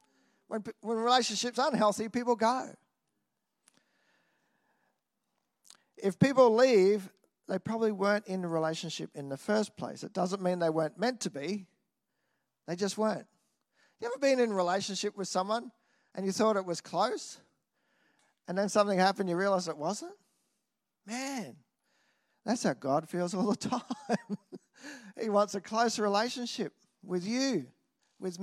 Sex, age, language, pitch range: male, 50-69, English, 185-230 Hz